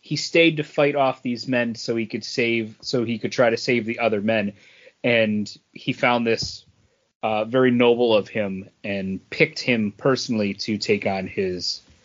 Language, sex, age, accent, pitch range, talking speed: English, male, 30-49, American, 115-145 Hz, 185 wpm